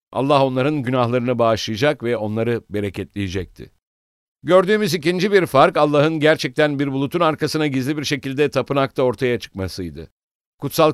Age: 60-79